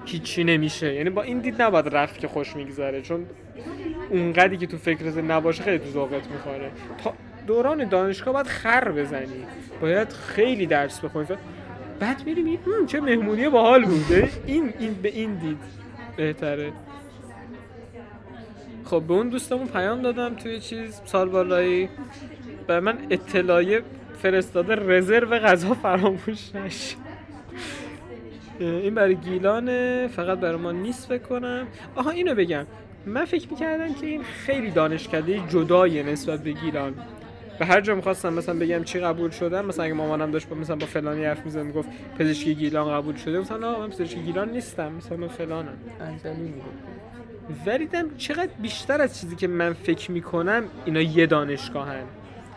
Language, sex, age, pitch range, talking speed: Persian, male, 20-39, 150-225 Hz, 145 wpm